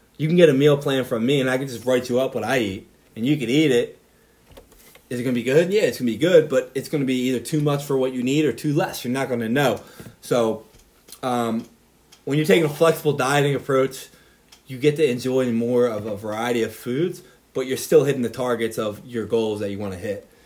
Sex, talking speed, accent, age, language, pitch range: male, 245 wpm, American, 20-39, English, 115-140 Hz